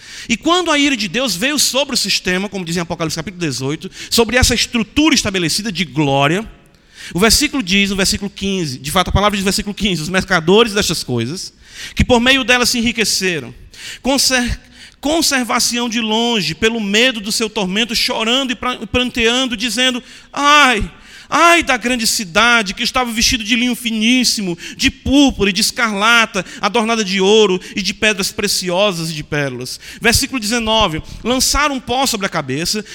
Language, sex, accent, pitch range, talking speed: Portuguese, male, Brazilian, 170-240 Hz, 170 wpm